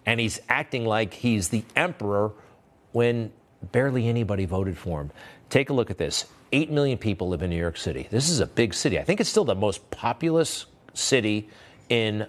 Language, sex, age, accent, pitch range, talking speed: English, male, 50-69, American, 100-140 Hz, 195 wpm